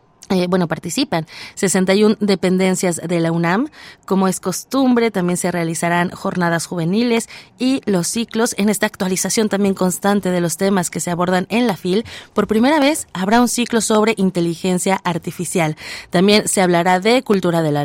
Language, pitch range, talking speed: Spanish, 175-220 Hz, 165 wpm